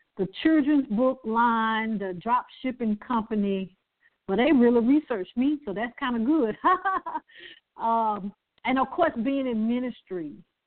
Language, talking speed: English, 140 wpm